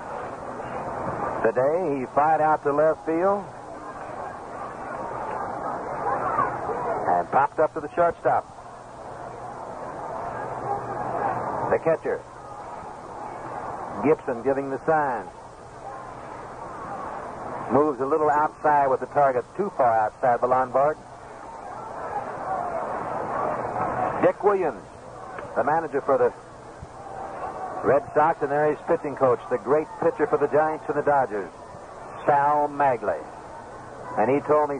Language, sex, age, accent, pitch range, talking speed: English, male, 60-79, American, 135-160 Hz, 100 wpm